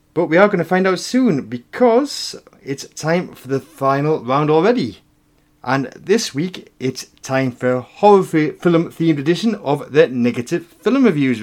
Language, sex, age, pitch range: English, male, 30-49, 125-185 Hz